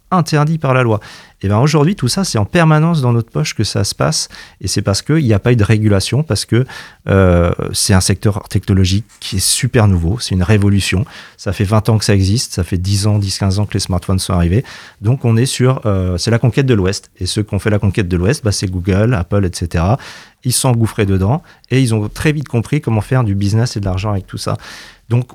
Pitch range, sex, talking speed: 95-120 Hz, male, 250 wpm